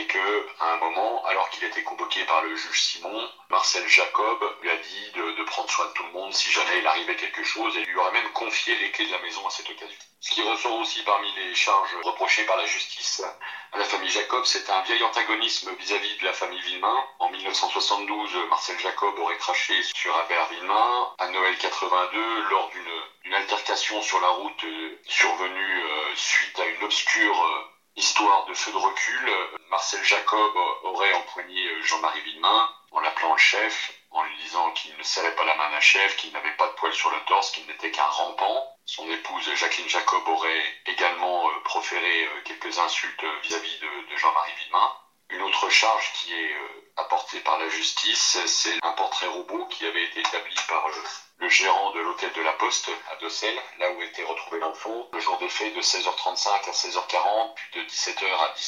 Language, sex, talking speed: French, male, 190 wpm